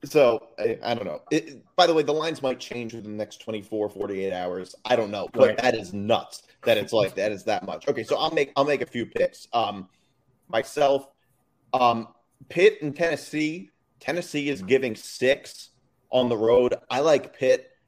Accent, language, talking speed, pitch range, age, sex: American, English, 200 wpm, 115-150 Hz, 30-49, male